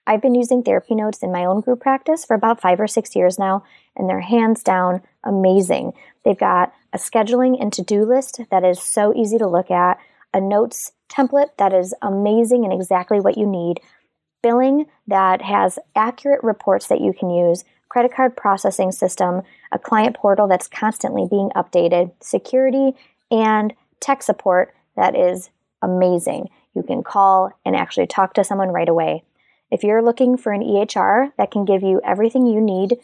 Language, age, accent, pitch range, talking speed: English, 20-39, American, 190-250 Hz, 175 wpm